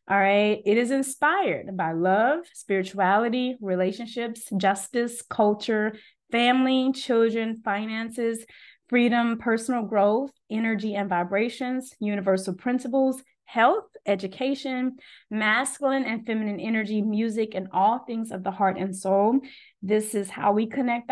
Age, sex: 20-39, female